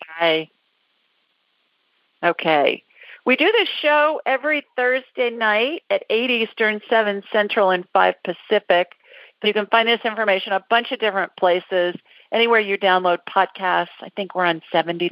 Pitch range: 165-220 Hz